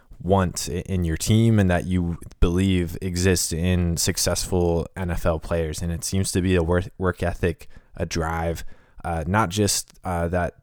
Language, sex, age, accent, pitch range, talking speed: English, male, 20-39, American, 85-95 Hz, 165 wpm